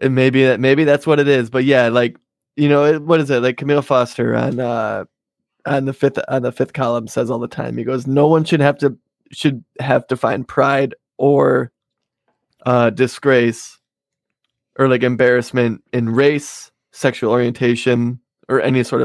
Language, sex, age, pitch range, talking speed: English, male, 20-39, 125-145 Hz, 185 wpm